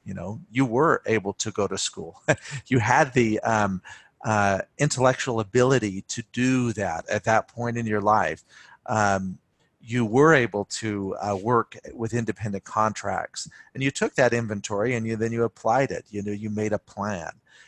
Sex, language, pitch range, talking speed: male, English, 105-125 Hz, 175 wpm